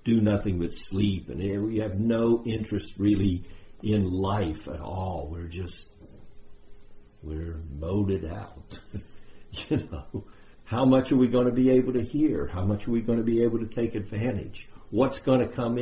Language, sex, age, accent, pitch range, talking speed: English, male, 60-79, American, 95-115 Hz, 175 wpm